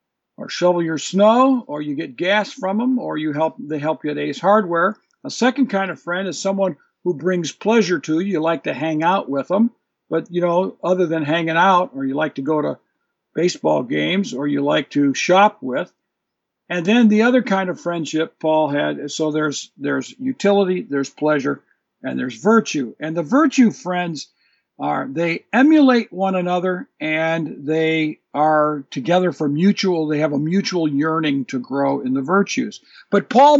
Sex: male